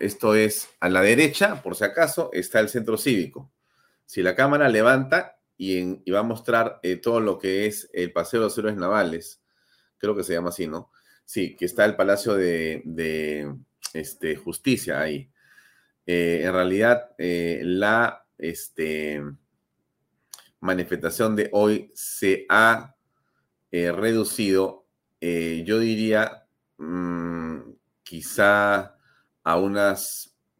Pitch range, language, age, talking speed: 85-110 Hz, Spanish, 40-59, 125 wpm